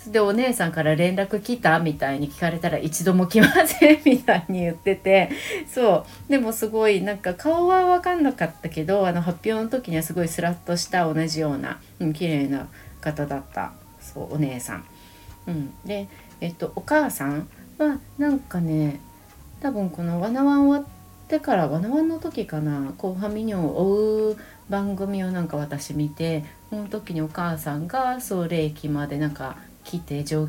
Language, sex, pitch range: Japanese, female, 145-205 Hz